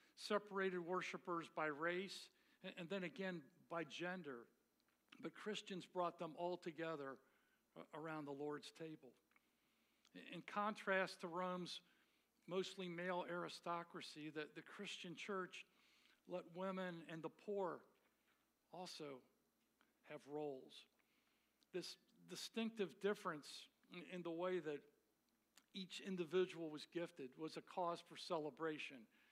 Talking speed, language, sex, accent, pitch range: 110 wpm, English, male, American, 160-195 Hz